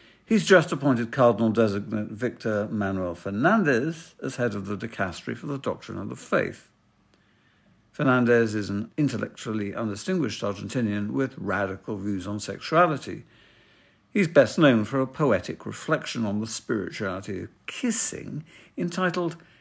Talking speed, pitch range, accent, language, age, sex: 130 wpm, 105-170 Hz, British, English, 60-79, male